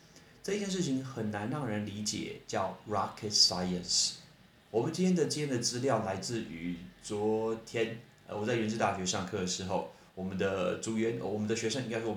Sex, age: male, 30-49